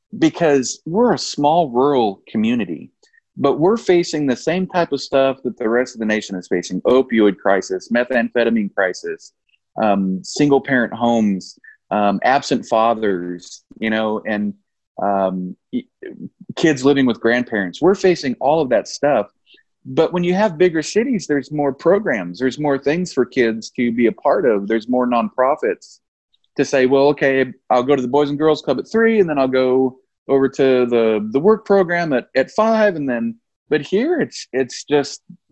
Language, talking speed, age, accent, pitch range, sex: English, 175 wpm, 30-49, American, 115-155 Hz, male